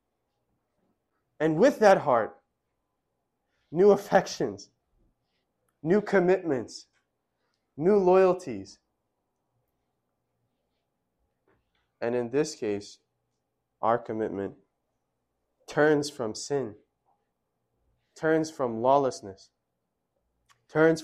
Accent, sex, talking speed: American, male, 65 wpm